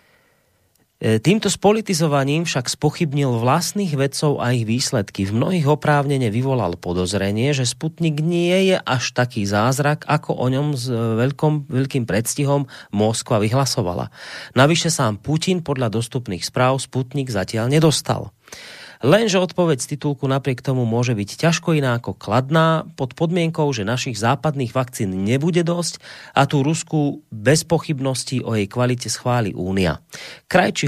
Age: 30-49